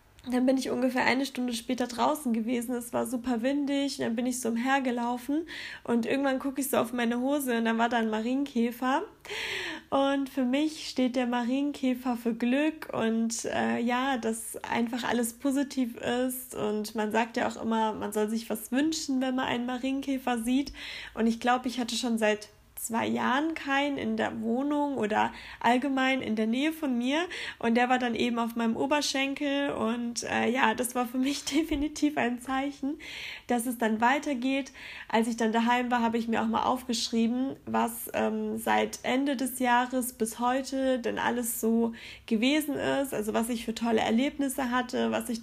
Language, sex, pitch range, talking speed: German, female, 230-270 Hz, 185 wpm